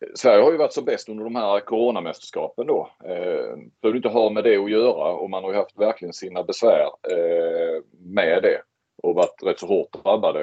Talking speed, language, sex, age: 205 wpm, Swedish, male, 30-49